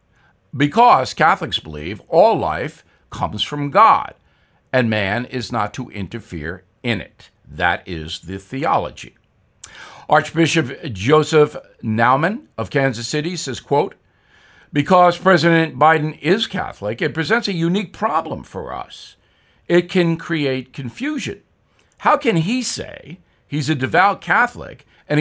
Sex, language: male, English